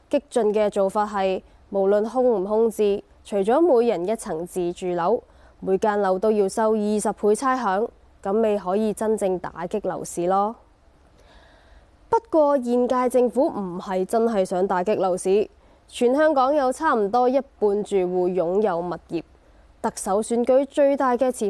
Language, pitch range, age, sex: Chinese, 190-245 Hz, 20-39, female